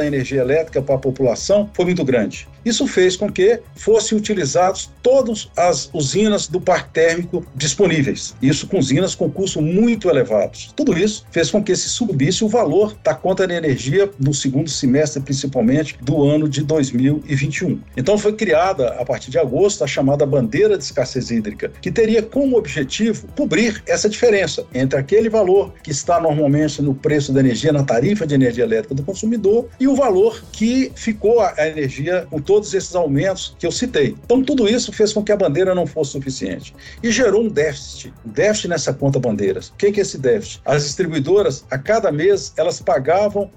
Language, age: Portuguese, 50-69